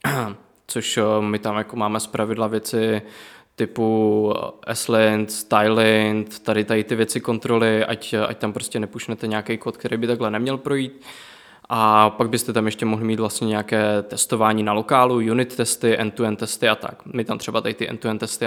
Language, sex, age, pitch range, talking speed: Czech, male, 20-39, 110-120 Hz, 165 wpm